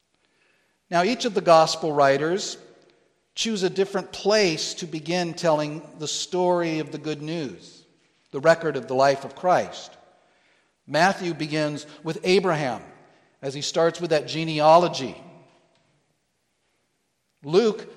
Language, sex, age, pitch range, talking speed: English, male, 50-69, 155-210 Hz, 125 wpm